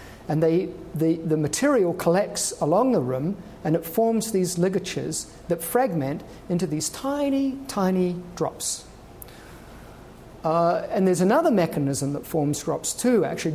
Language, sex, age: English, male, 50-69